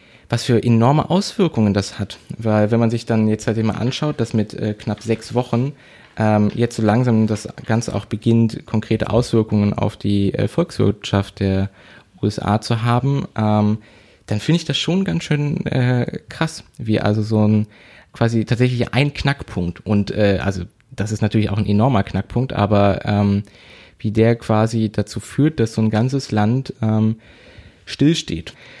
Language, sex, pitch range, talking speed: German, male, 105-120 Hz, 170 wpm